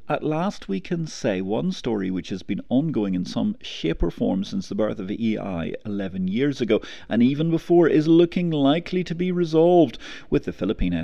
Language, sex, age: English, male, 50-69